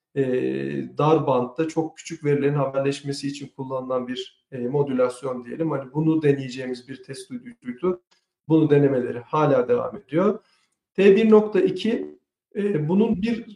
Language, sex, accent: Turkish, male, native